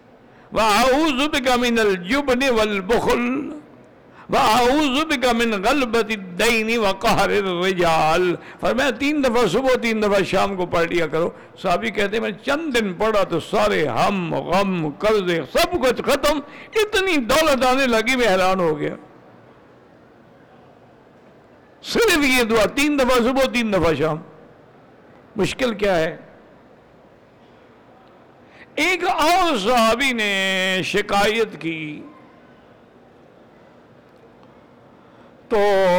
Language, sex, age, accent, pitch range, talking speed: English, male, 60-79, Indian, 180-255 Hz, 95 wpm